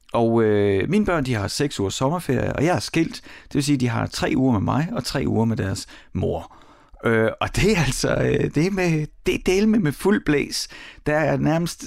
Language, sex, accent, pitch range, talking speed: Danish, male, native, 110-140 Hz, 215 wpm